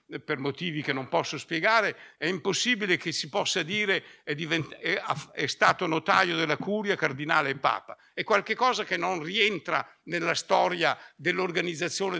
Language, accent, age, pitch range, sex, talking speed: Italian, native, 60-79, 160-220 Hz, male, 155 wpm